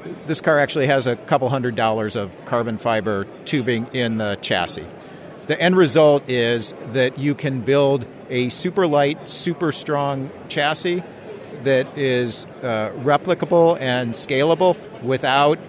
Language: English